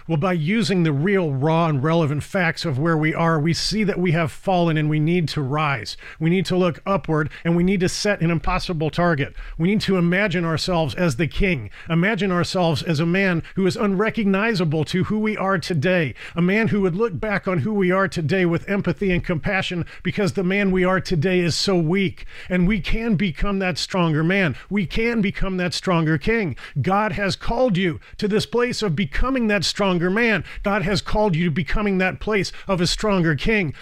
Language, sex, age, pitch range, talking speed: English, male, 40-59, 165-195 Hz, 210 wpm